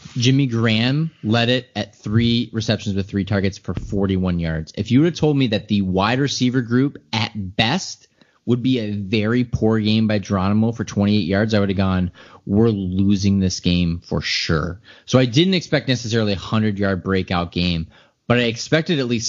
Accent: American